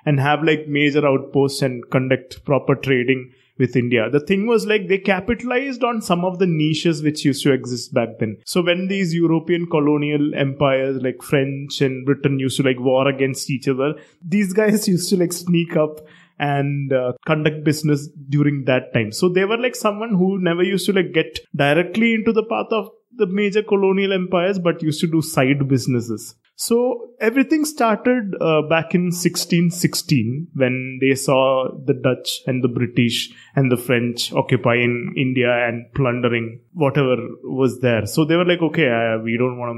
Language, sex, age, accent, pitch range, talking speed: English, male, 20-39, Indian, 130-175 Hz, 180 wpm